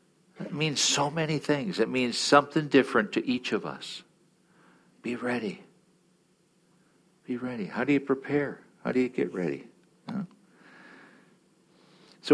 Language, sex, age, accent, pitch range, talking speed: English, male, 60-79, American, 100-150 Hz, 135 wpm